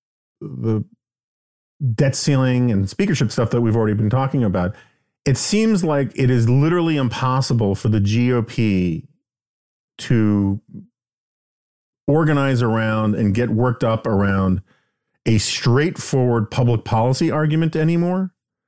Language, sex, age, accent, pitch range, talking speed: English, male, 40-59, American, 110-140 Hz, 115 wpm